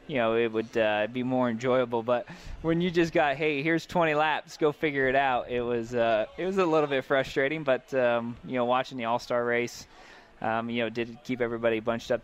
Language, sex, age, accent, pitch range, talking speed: English, male, 20-39, American, 115-135 Hz, 225 wpm